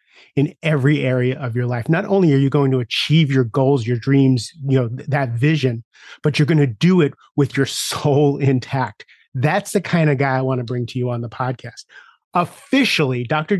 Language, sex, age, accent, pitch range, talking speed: English, male, 30-49, American, 130-165 Hz, 205 wpm